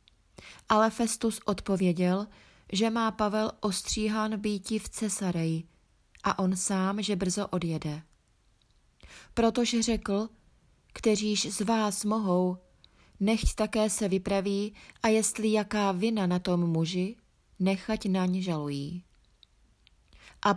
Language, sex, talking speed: Czech, female, 110 wpm